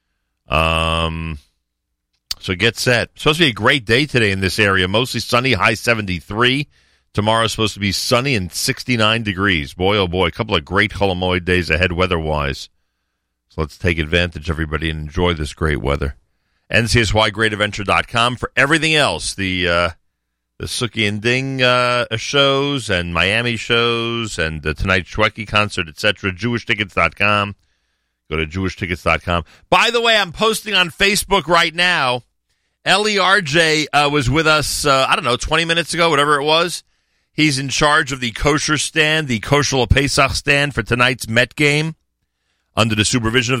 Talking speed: 160 wpm